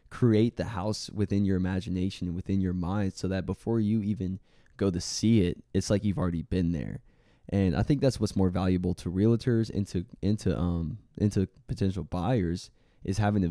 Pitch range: 90-110 Hz